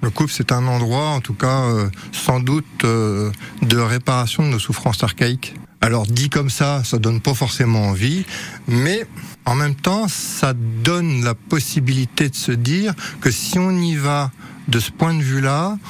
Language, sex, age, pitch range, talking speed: French, male, 60-79, 115-150 Hz, 180 wpm